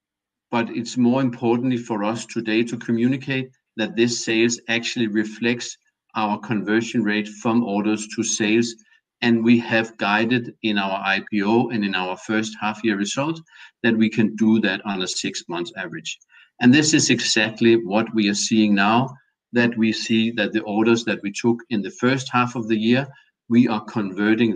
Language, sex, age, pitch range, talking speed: Danish, male, 50-69, 105-120 Hz, 180 wpm